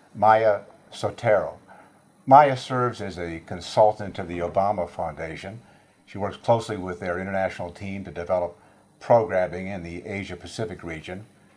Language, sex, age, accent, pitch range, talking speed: English, male, 50-69, American, 95-115 Hz, 135 wpm